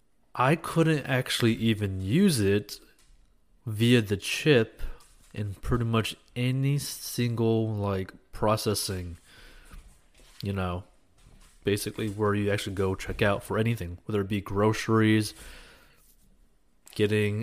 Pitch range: 100-120 Hz